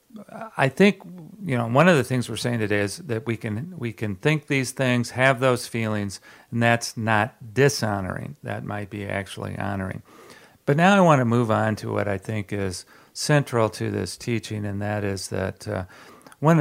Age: 50-69